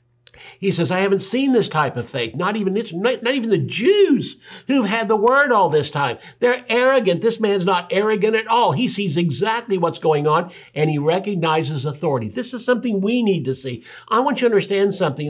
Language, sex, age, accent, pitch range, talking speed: English, male, 60-79, American, 135-200 Hz, 215 wpm